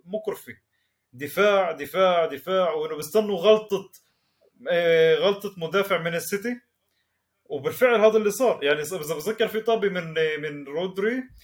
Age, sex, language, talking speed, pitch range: 30-49, male, Arabic, 120 wpm, 150-215 Hz